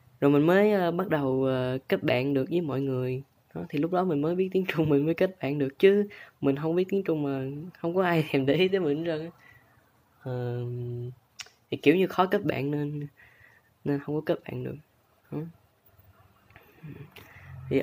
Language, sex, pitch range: Chinese, female, 130-165 Hz